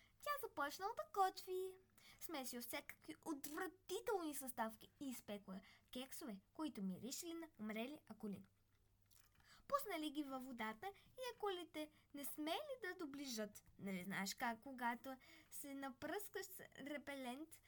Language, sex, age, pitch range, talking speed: Bulgarian, female, 20-39, 225-330 Hz, 115 wpm